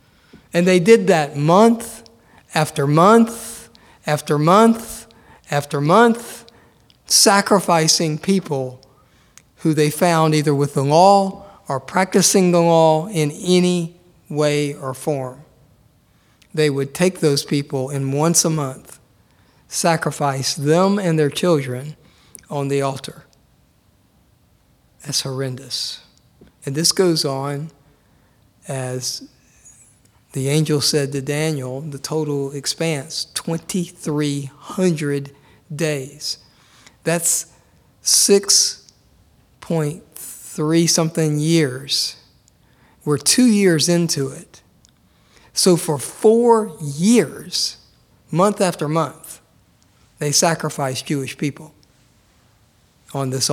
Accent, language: American, English